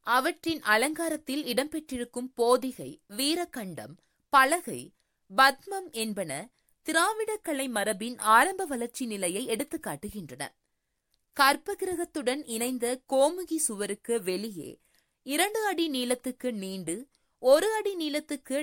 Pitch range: 225-320 Hz